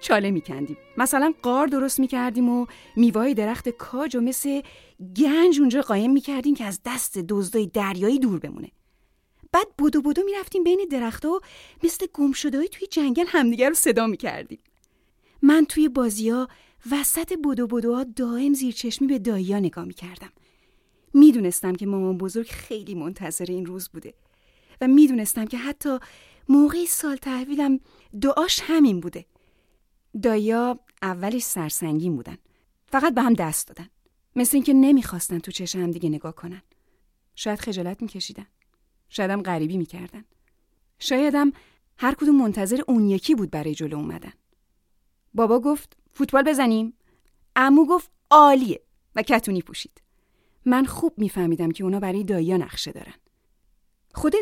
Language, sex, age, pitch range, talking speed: Persian, female, 30-49, 190-280 Hz, 135 wpm